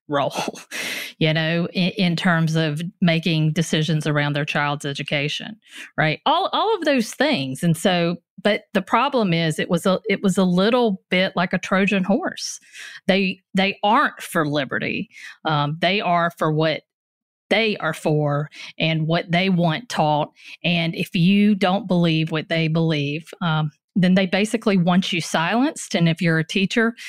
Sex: female